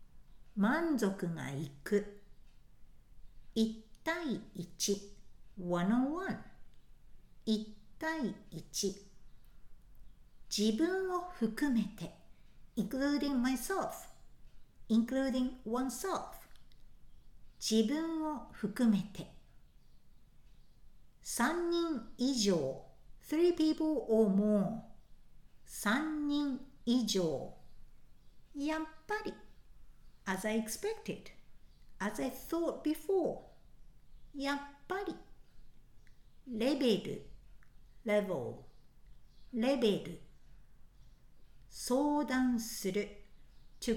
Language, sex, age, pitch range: Japanese, female, 60-79, 205-300 Hz